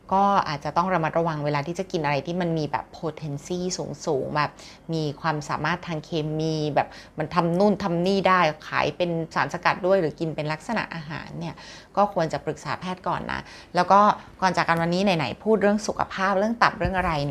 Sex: female